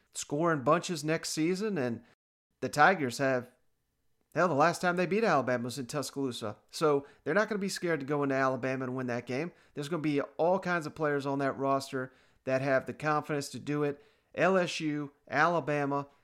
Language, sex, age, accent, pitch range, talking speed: English, male, 40-59, American, 135-155 Hz, 195 wpm